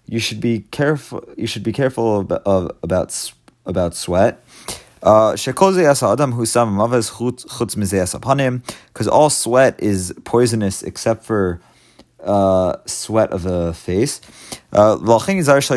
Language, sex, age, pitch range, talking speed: English, male, 30-49, 105-130 Hz, 105 wpm